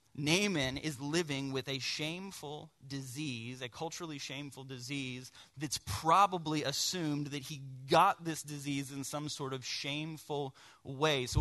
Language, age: English, 30-49